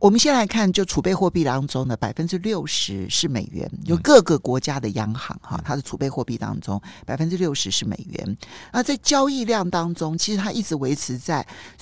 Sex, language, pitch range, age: male, Chinese, 125-195 Hz, 50-69